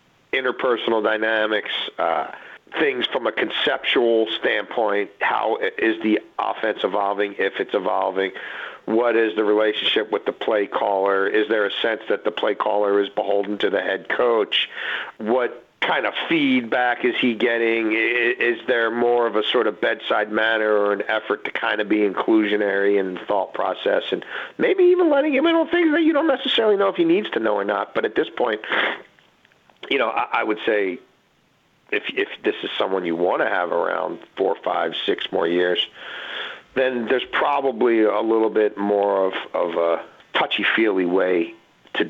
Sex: male